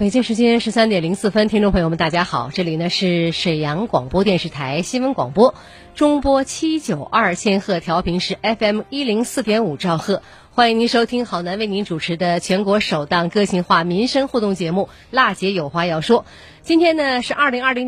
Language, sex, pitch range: Chinese, female, 175-240 Hz